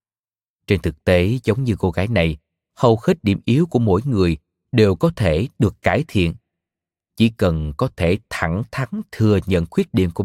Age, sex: 20-39, male